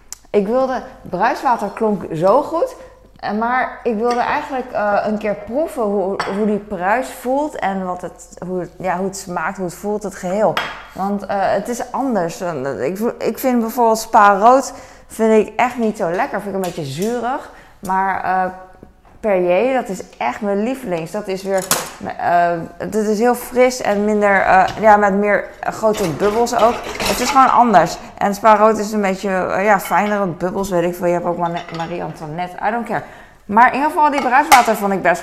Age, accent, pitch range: 20-39, Dutch, 185-235 Hz